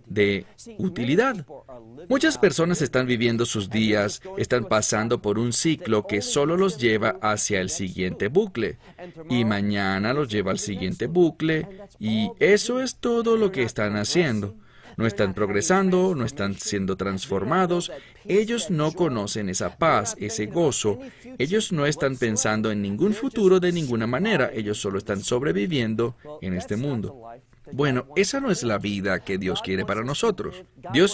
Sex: male